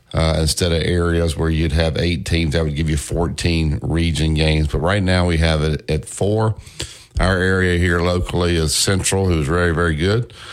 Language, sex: English, male